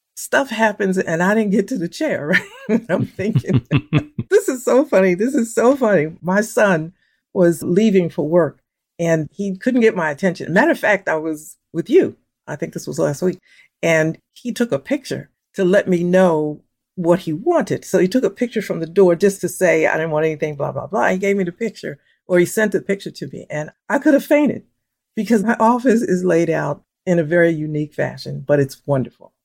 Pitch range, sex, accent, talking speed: 160-235 Hz, female, American, 215 wpm